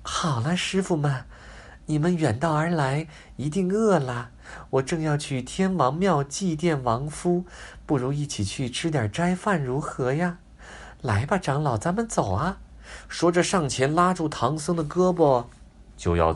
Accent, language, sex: native, Chinese, male